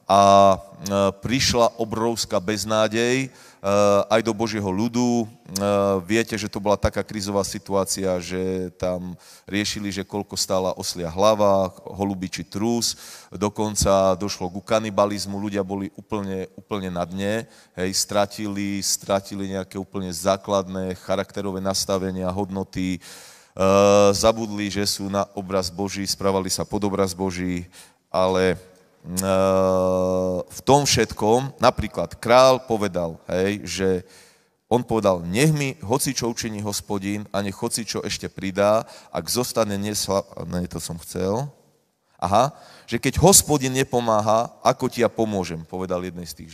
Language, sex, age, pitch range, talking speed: Slovak, male, 30-49, 95-110 Hz, 125 wpm